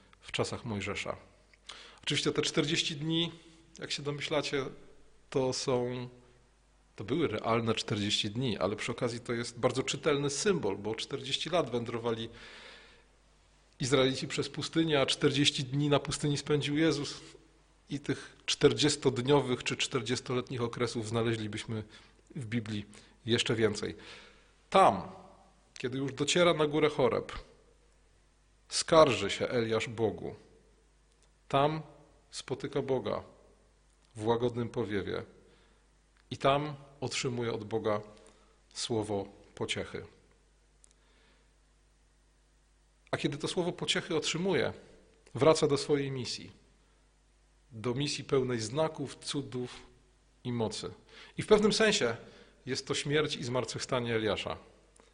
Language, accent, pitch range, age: Polish, native, 120-150 Hz, 40-59